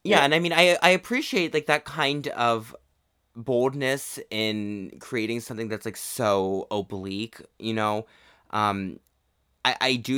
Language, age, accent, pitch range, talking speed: English, 20-39, American, 100-120 Hz, 145 wpm